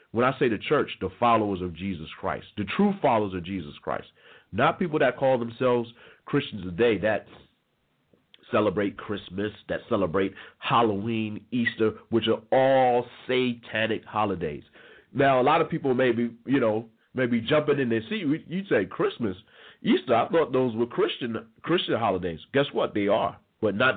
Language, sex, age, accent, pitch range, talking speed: English, male, 40-59, American, 105-140 Hz, 165 wpm